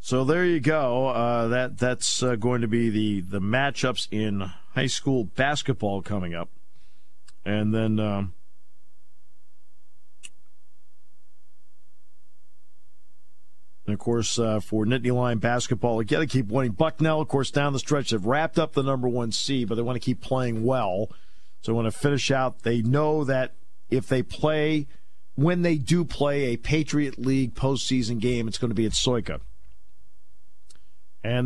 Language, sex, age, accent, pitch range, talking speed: English, male, 50-69, American, 90-130 Hz, 160 wpm